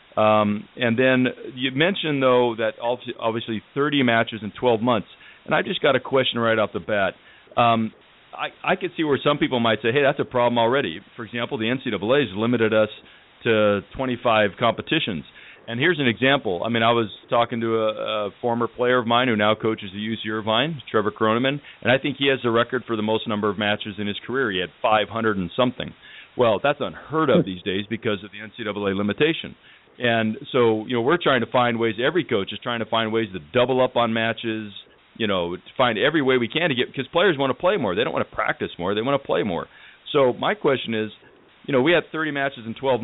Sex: male